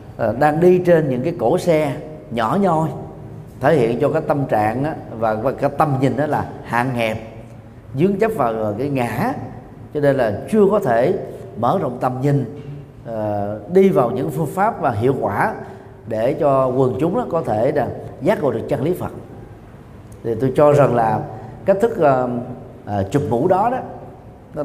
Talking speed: 175 wpm